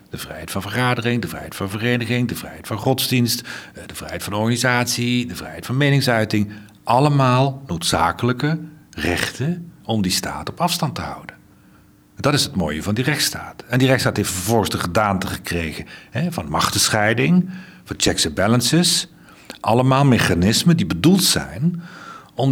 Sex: male